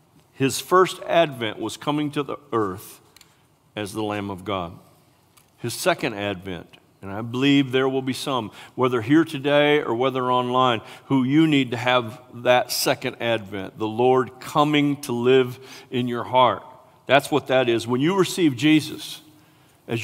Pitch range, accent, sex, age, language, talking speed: 130-165 Hz, American, male, 50-69, English, 160 wpm